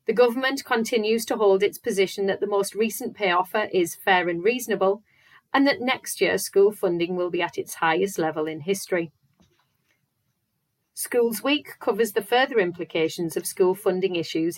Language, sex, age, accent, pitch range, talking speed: English, female, 40-59, British, 180-235 Hz, 170 wpm